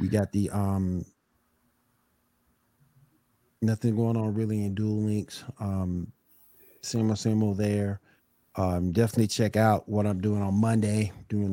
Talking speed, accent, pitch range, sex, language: 140 wpm, American, 100-120 Hz, male, English